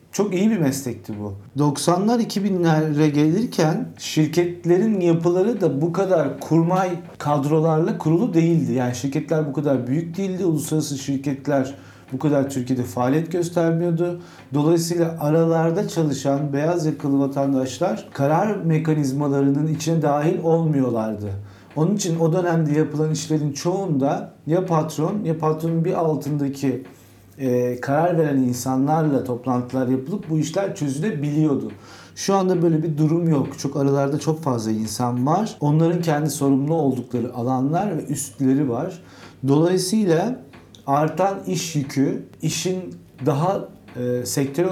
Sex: male